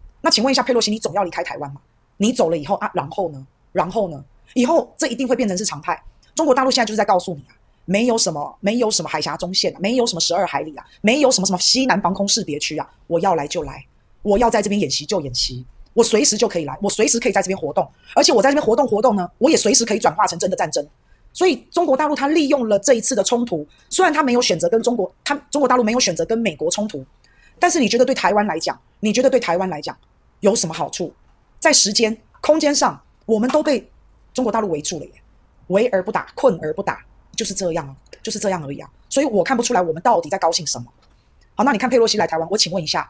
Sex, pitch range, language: female, 175-250 Hz, Chinese